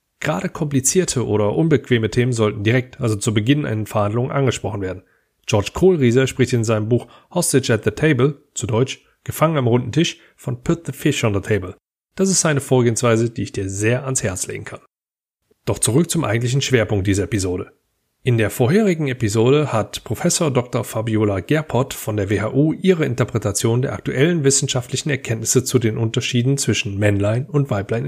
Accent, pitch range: German, 110-140 Hz